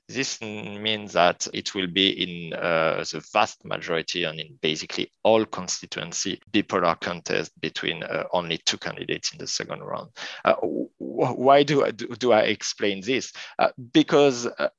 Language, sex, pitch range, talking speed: English, male, 85-110 Hz, 160 wpm